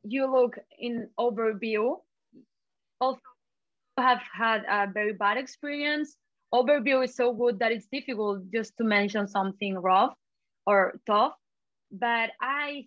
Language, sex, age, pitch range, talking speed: English, female, 20-39, 195-255 Hz, 125 wpm